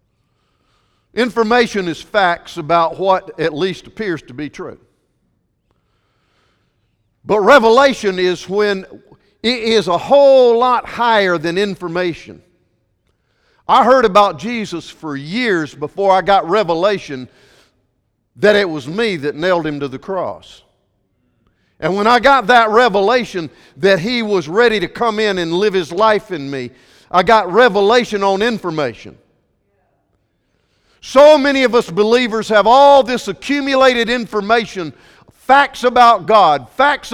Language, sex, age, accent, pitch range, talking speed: English, male, 50-69, American, 150-235 Hz, 130 wpm